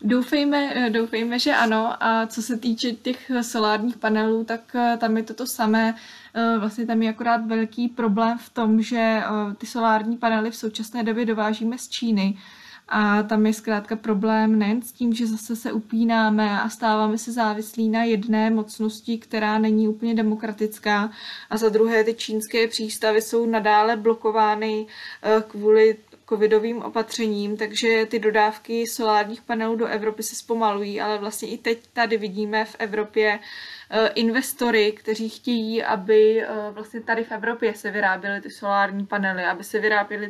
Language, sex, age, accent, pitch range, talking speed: Czech, female, 20-39, native, 215-235 Hz, 150 wpm